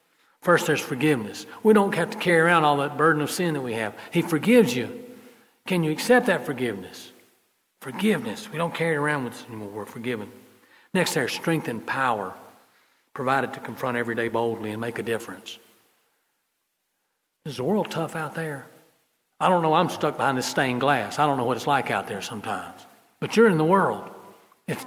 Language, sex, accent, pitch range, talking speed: English, male, American, 115-170 Hz, 195 wpm